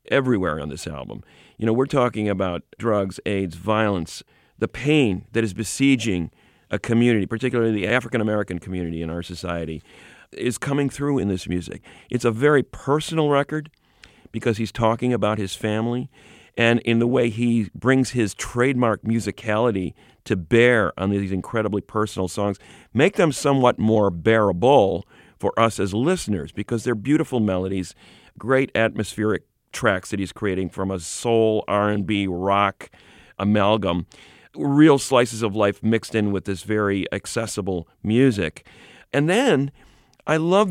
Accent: American